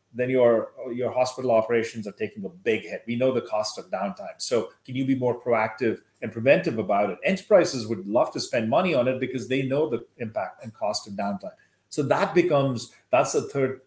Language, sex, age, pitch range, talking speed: English, male, 30-49, 110-130 Hz, 210 wpm